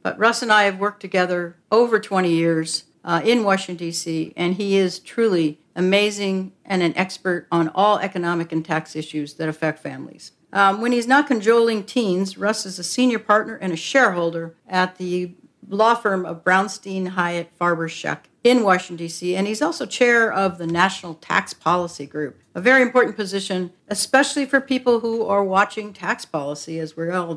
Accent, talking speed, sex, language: American, 180 wpm, female, English